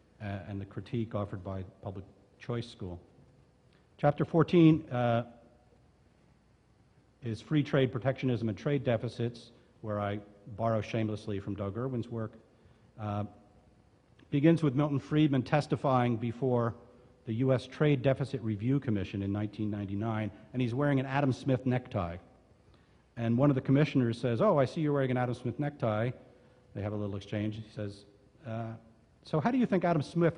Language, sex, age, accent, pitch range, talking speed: English, male, 50-69, American, 105-135 Hz, 155 wpm